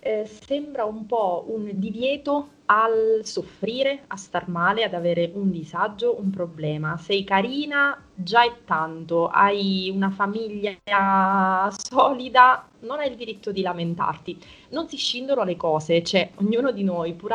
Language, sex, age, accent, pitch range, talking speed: Italian, female, 20-39, native, 170-205 Hz, 145 wpm